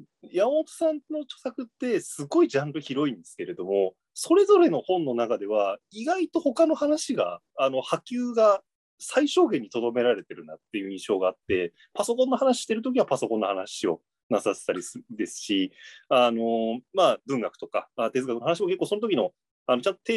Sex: male